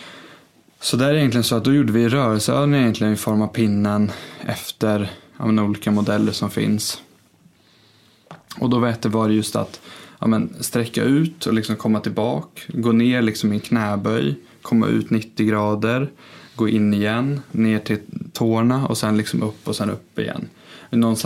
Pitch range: 105-125 Hz